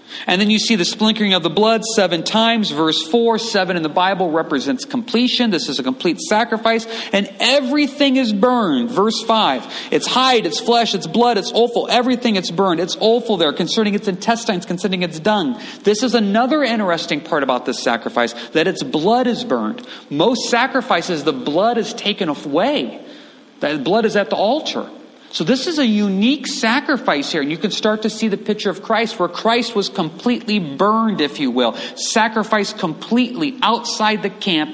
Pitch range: 175-240 Hz